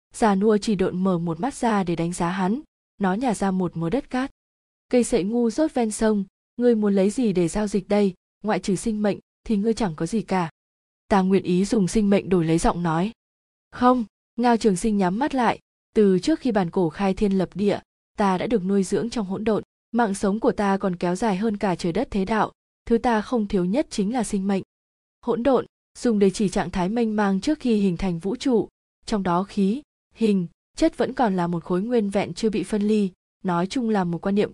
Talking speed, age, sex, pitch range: 235 wpm, 20-39, female, 185-225 Hz